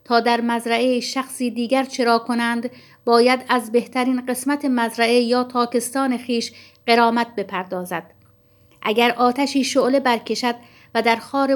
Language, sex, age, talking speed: Persian, female, 50-69, 125 wpm